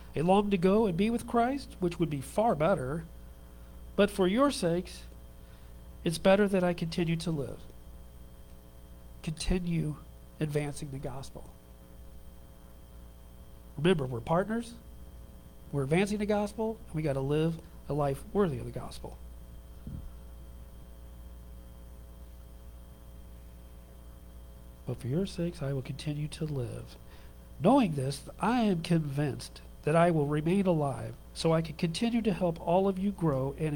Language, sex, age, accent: English, male, 50-69, American